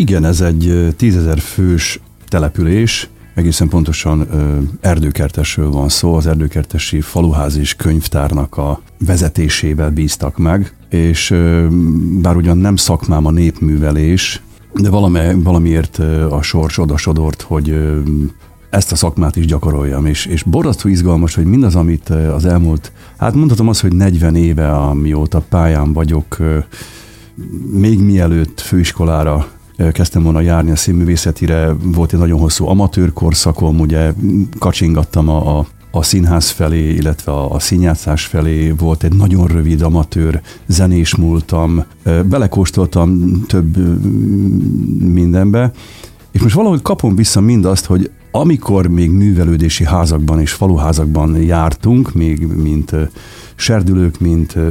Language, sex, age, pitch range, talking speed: Hungarian, male, 50-69, 80-95 Hz, 120 wpm